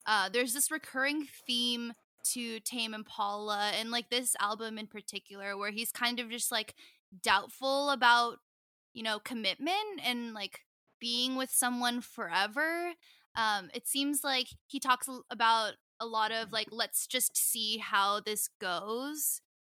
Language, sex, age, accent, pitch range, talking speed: English, female, 10-29, American, 215-255 Hz, 145 wpm